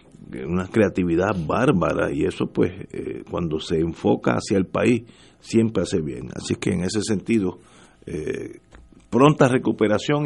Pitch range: 95-120 Hz